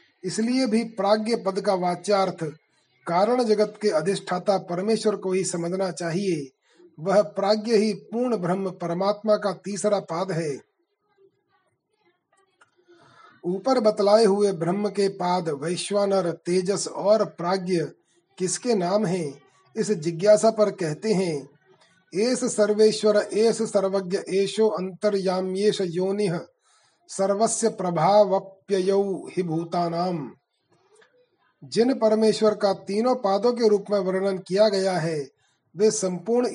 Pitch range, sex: 180-215 Hz, male